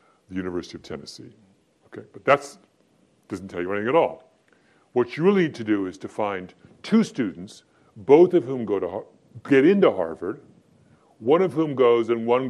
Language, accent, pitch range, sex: English, American, 95-140 Hz, female